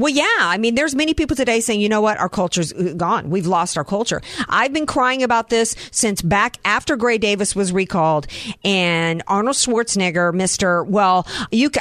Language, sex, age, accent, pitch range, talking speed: English, female, 50-69, American, 180-245 Hz, 190 wpm